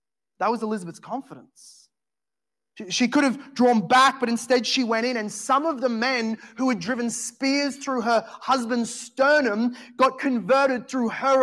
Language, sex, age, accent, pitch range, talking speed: English, male, 20-39, Australian, 220-265 Hz, 170 wpm